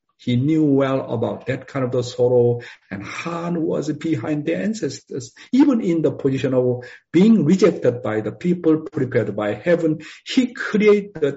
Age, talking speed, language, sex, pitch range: 50-69, 155 wpm, English, male, 120-165 Hz